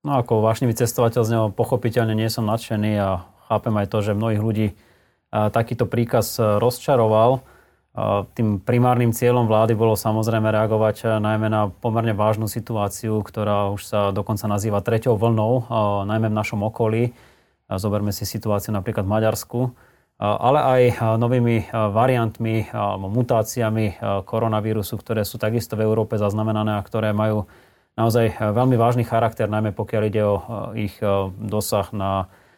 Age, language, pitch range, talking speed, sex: 20-39, Slovak, 105-120 Hz, 140 wpm, male